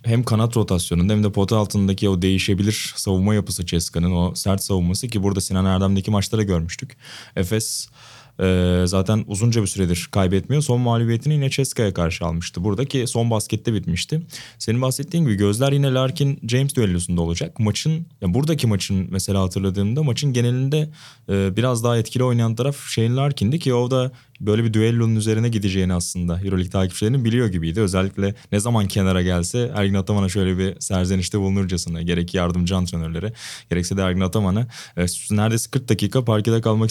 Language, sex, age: Turkish, male, 20-39